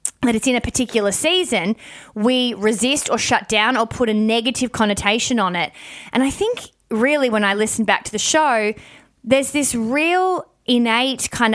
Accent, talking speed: Australian, 175 wpm